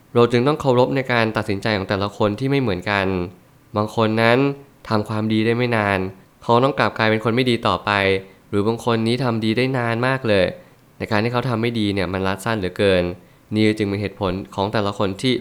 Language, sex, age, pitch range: Thai, male, 20-39, 100-120 Hz